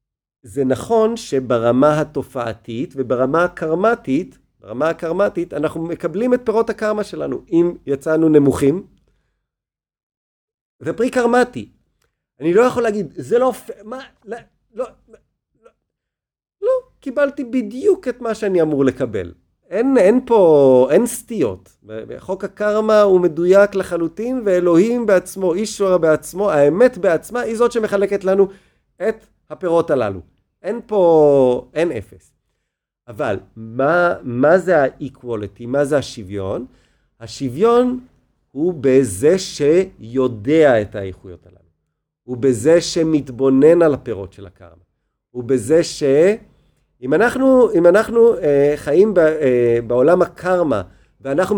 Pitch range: 135-210 Hz